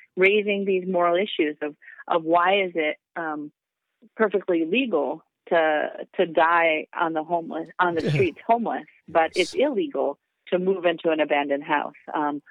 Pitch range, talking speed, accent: 155-200 Hz, 155 wpm, American